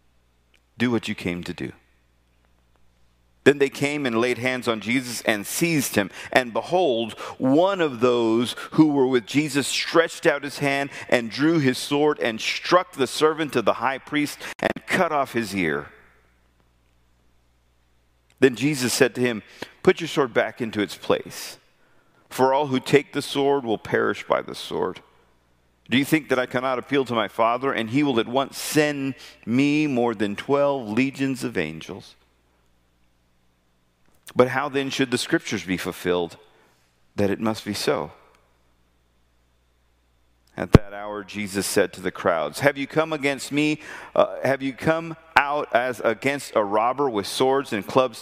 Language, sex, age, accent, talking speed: English, male, 50-69, American, 165 wpm